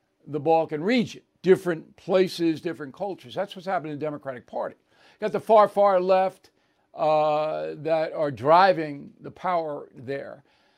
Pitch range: 155-200 Hz